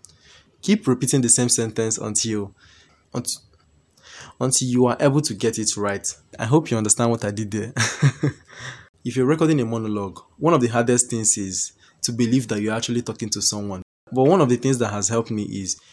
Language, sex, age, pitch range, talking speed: English, male, 20-39, 105-125 Hz, 190 wpm